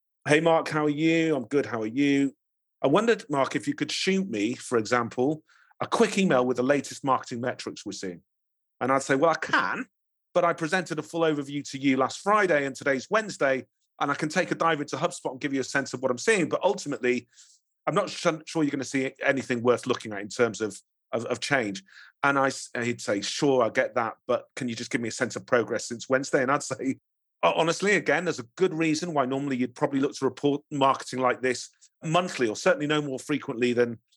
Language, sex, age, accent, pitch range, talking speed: English, male, 40-59, British, 125-155 Hz, 230 wpm